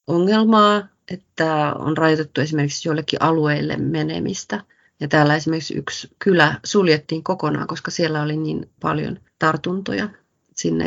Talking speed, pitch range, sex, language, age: 120 wpm, 155-190 Hz, female, Finnish, 30-49